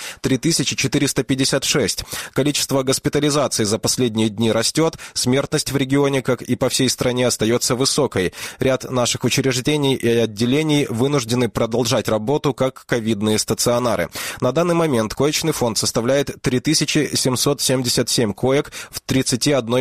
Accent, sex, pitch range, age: native, male, 115-140 Hz, 20-39